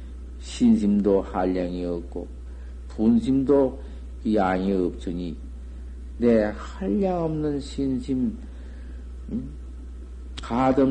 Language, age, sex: Korean, 50-69, male